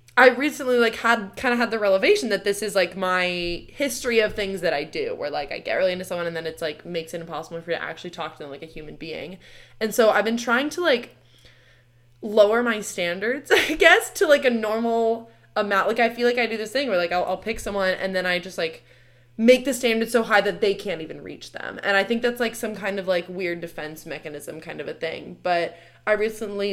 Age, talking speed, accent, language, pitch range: 20-39, 250 wpm, American, English, 170-235 Hz